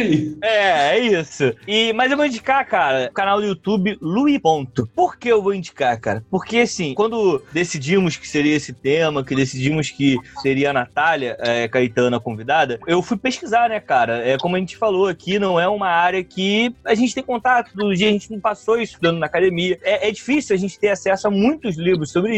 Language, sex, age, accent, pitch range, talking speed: Portuguese, male, 20-39, Brazilian, 165-240 Hz, 210 wpm